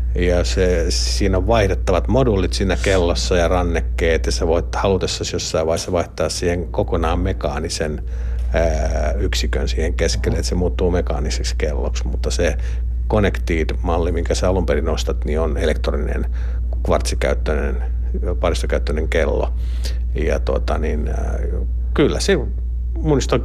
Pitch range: 75-95 Hz